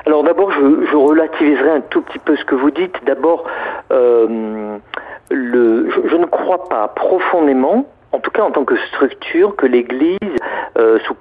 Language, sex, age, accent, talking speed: French, male, 50-69, French, 160 wpm